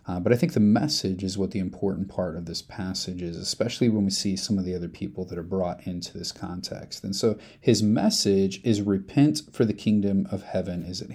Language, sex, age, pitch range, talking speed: English, male, 30-49, 95-115 Hz, 230 wpm